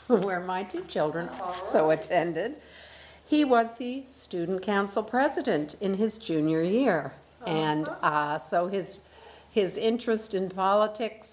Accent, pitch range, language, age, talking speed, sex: American, 160-215 Hz, English, 50-69, 125 wpm, female